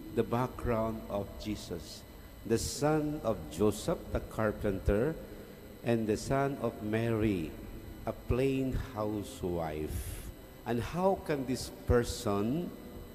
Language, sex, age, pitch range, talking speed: English, male, 50-69, 100-130 Hz, 105 wpm